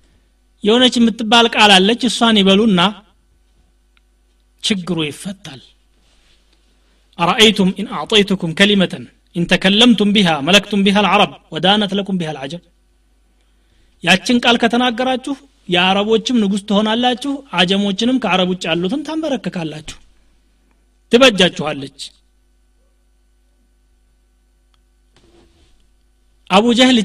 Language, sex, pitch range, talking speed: Amharic, male, 155-220 Hz, 80 wpm